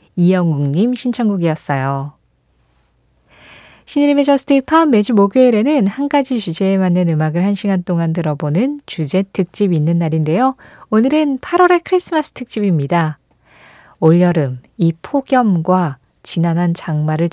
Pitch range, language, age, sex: 160-250 Hz, Korean, 20-39, female